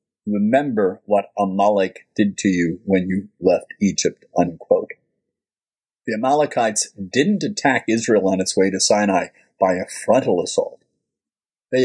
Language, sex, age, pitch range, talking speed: English, male, 50-69, 100-140 Hz, 130 wpm